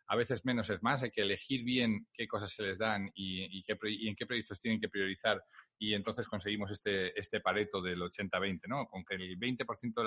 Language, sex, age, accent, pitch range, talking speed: Spanish, male, 40-59, Spanish, 105-150 Hz, 225 wpm